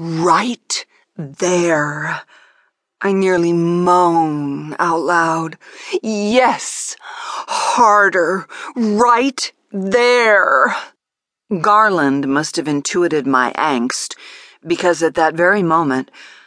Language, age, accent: English, 40-59, American